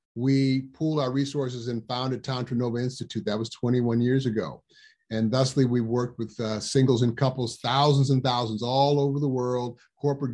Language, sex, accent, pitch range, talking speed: English, male, American, 120-145 Hz, 180 wpm